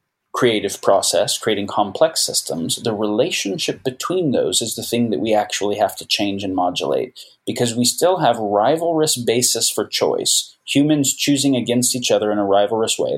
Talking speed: 170 wpm